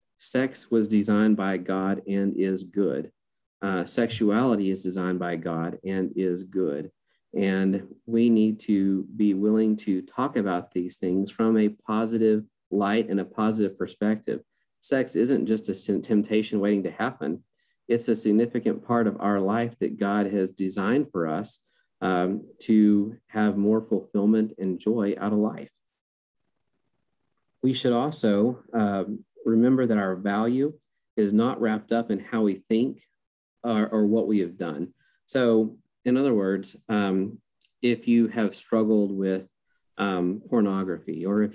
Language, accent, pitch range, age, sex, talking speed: English, American, 95-110 Hz, 40-59, male, 150 wpm